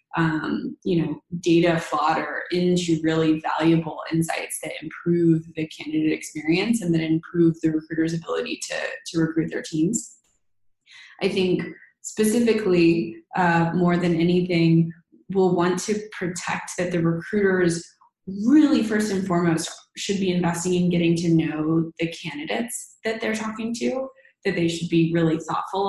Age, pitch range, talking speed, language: 20-39, 165-185 Hz, 140 wpm, English